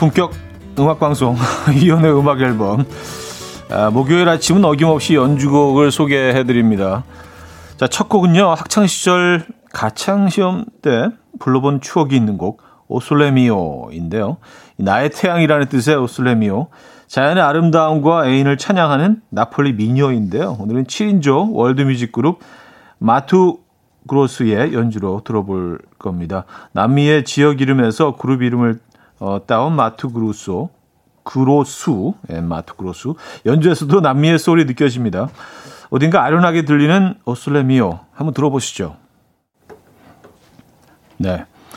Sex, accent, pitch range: male, native, 115-155 Hz